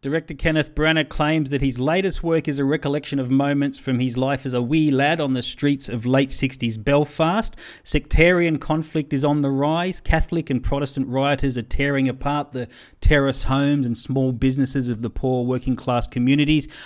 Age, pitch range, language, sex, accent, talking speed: 40-59, 120-145 Hz, English, male, Australian, 185 wpm